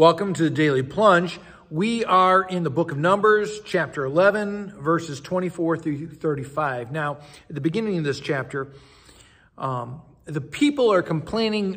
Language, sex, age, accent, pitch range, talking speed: English, male, 50-69, American, 155-190 Hz, 155 wpm